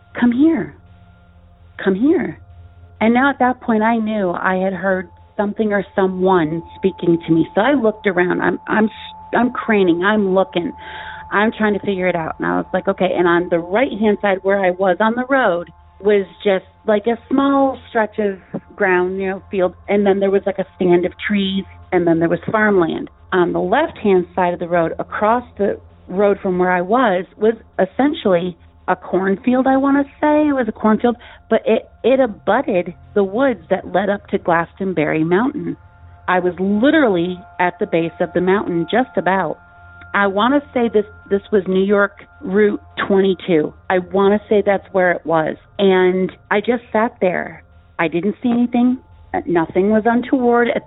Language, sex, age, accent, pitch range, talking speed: English, female, 40-59, American, 175-215 Hz, 185 wpm